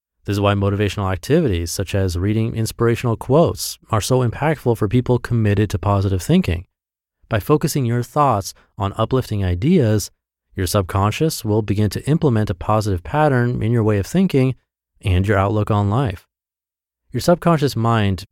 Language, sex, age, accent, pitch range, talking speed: English, male, 30-49, American, 90-120 Hz, 155 wpm